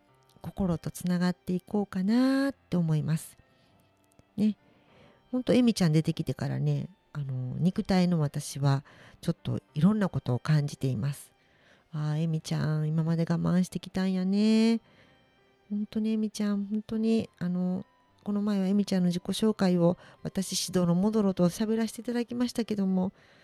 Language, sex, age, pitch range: Japanese, female, 50-69, 160-220 Hz